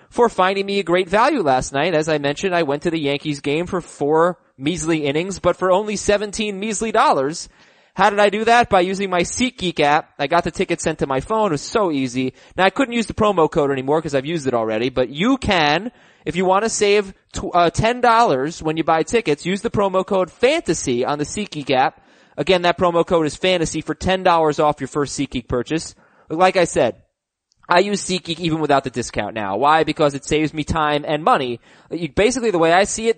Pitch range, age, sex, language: 145-195 Hz, 20-39, male, English